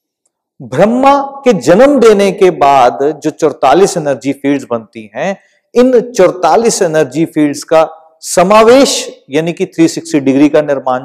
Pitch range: 155-245 Hz